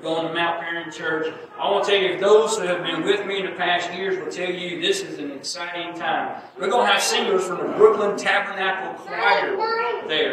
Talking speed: 225 wpm